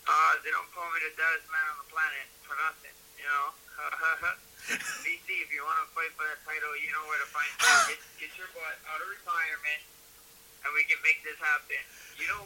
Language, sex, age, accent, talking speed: English, male, 30-49, American, 215 wpm